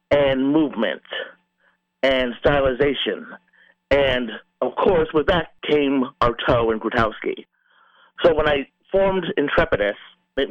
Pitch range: 130-175 Hz